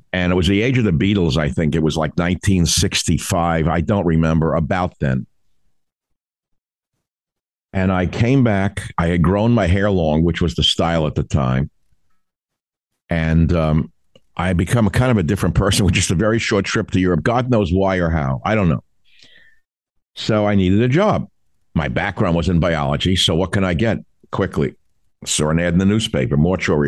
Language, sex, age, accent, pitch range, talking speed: English, male, 50-69, American, 85-105 Hz, 195 wpm